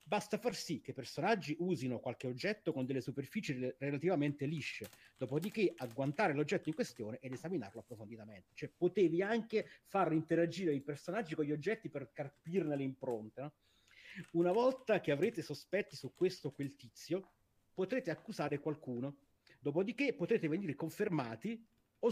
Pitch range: 125-180 Hz